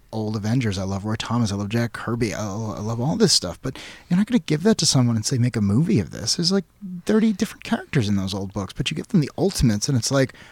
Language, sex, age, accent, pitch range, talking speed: English, male, 30-49, American, 115-170 Hz, 285 wpm